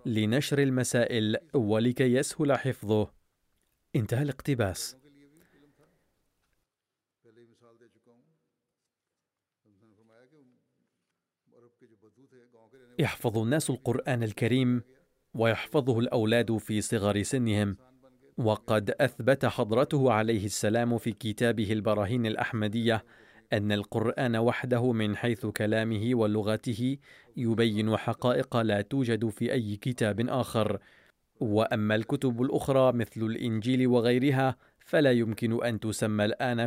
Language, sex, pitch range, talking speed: Arabic, male, 110-125 Hz, 85 wpm